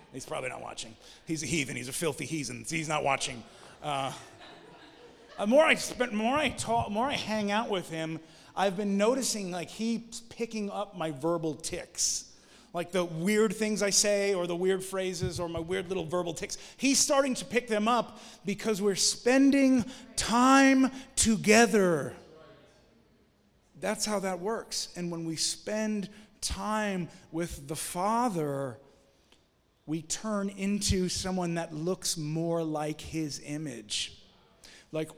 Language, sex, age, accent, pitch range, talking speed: English, male, 30-49, American, 150-205 Hz, 150 wpm